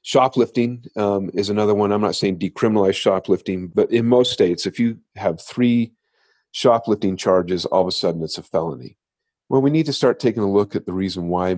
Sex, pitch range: male, 90-110 Hz